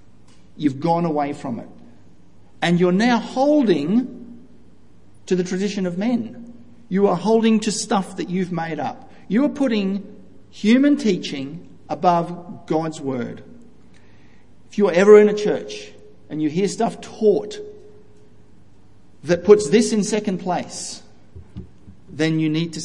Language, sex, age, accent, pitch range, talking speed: English, male, 50-69, Australian, 145-205 Hz, 135 wpm